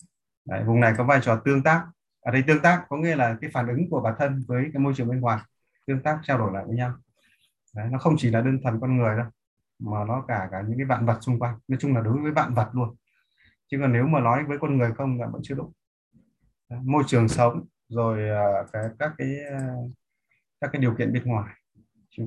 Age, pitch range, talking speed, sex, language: 20-39, 115-140 Hz, 245 wpm, male, Vietnamese